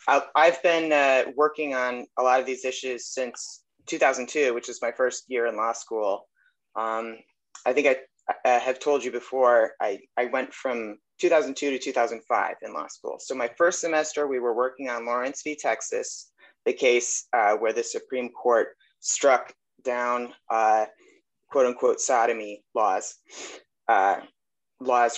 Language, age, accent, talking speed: English, 30-49, American, 155 wpm